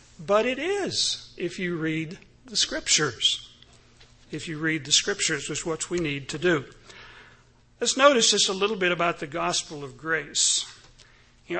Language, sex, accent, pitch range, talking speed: English, male, American, 150-180 Hz, 165 wpm